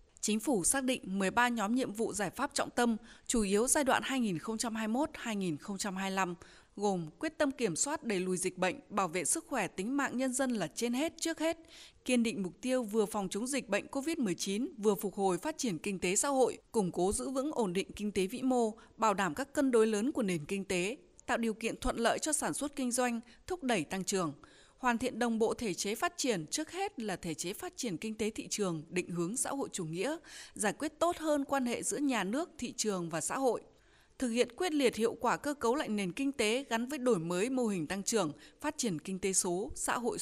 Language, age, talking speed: Vietnamese, 20-39, 235 wpm